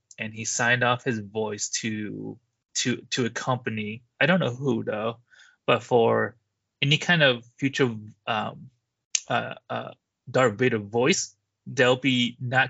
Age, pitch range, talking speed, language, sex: 20-39, 110-130 Hz, 145 wpm, English, male